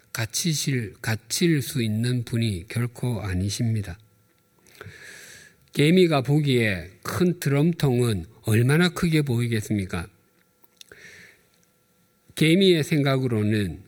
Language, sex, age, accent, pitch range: Korean, male, 50-69, native, 105-150 Hz